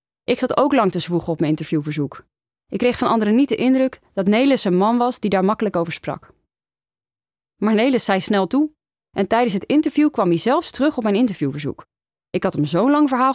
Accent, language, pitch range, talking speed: Dutch, Dutch, 175-245 Hz, 215 wpm